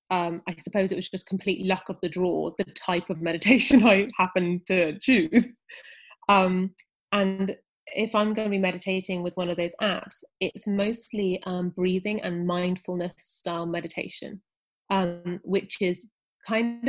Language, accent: English, British